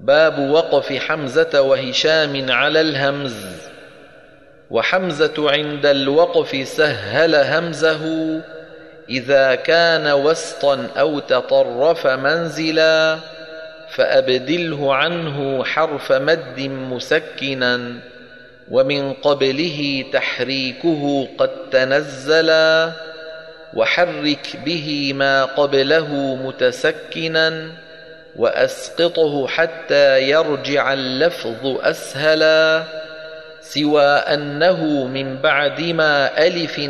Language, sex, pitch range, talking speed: Arabic, male, 135-160 Hz, 70 wpm